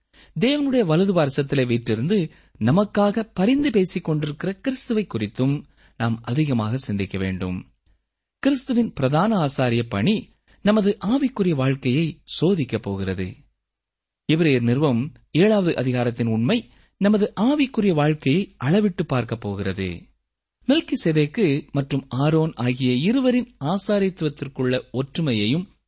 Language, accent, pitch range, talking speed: Tamil, native, 120-200 Hz, 95 wpm